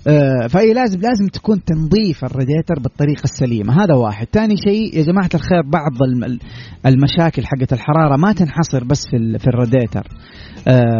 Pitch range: 125-175 Hz